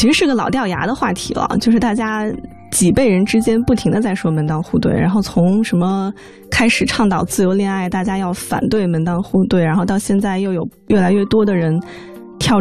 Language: Chinese